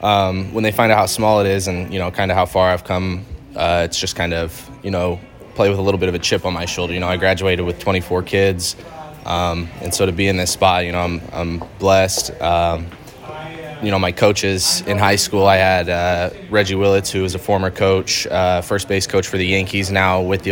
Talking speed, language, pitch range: 245 wpm, English, 90-100 Hz